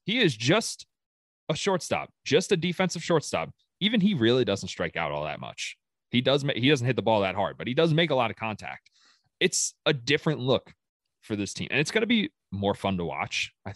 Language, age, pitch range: English, 30-49, 95-130 Hz